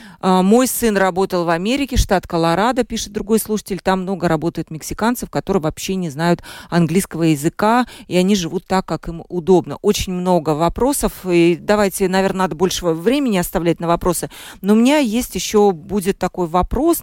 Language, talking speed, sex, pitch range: Russian, 165 wpm, female, 165-215 Hz